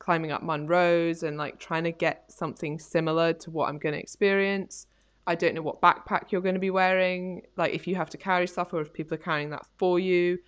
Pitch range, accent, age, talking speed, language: 150-180 Hz, British, 20-39, 235 wpm, English